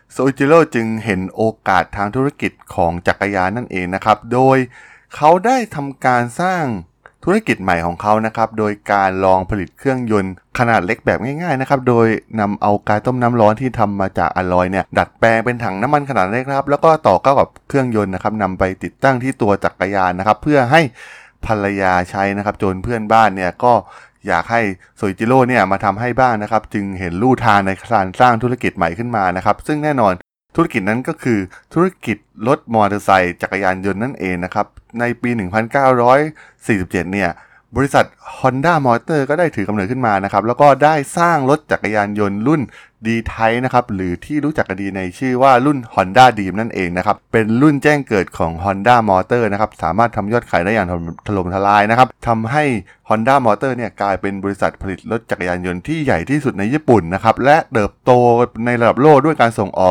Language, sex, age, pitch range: Thai, male, 20-39, 100-130 Hz